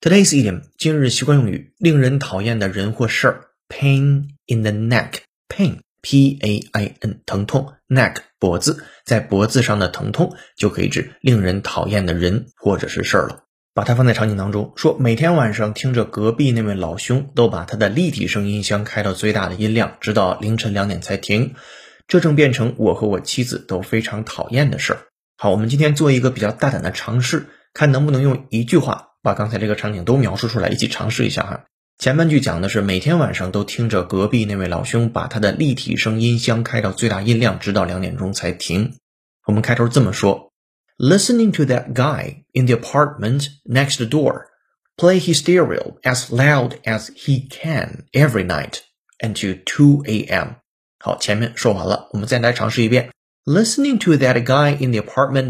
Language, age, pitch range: Chinese, 20-39, 105-140 Hz